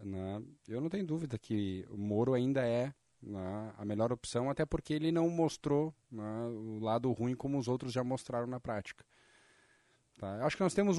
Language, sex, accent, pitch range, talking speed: Portuguese, male, Brazilian, 110-140 Hz, 190 wpm